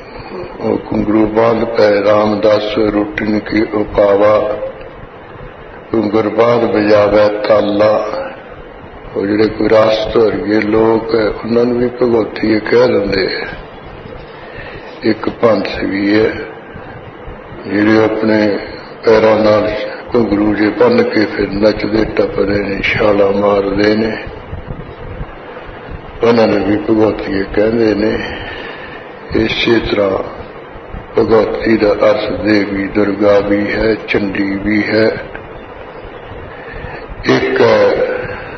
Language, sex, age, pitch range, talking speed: English, male, 60-79, 105-115 Hz, 55 wpm